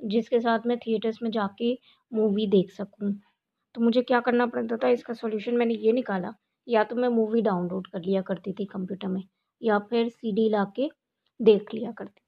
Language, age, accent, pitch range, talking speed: Hindi, 20-39, native, 205-245 Hz, 195 wpm